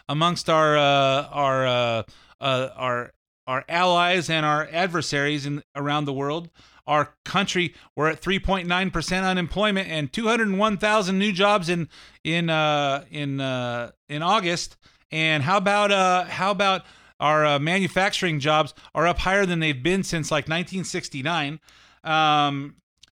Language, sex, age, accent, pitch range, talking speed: English, male, 30-49, American, 140-175 Hz, 140 wpm